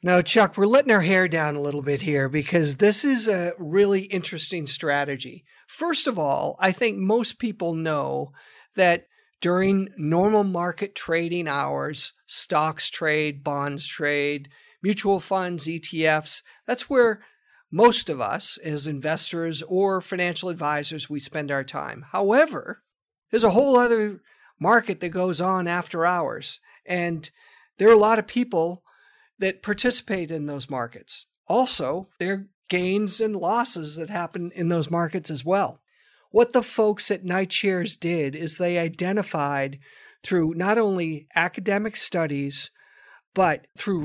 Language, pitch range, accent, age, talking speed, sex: English, 160-215 Hz, American, 50-69, 145 wpm, male